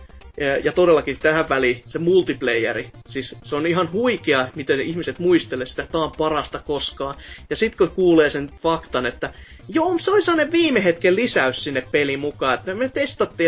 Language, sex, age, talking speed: Finnish, male, 30-49, 175 wpm